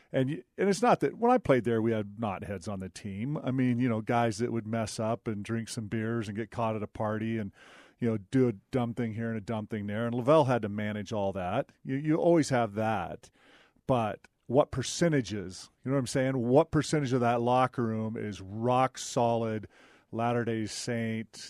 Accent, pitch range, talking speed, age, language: American, 110-130 Hz, 225 wpm, 40-59, English